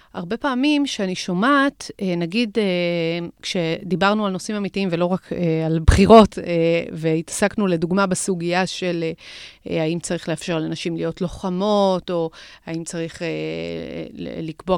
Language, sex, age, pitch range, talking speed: Hebrew, female, 30-49, 175-215 Hz, 110 wpm